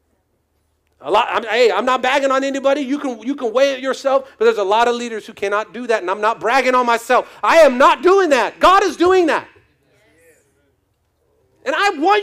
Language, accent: English, American